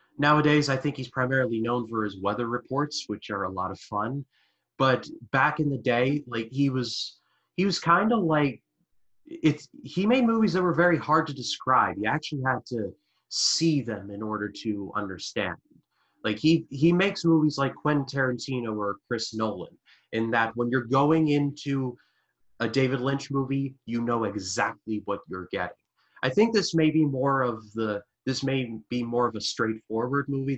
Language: English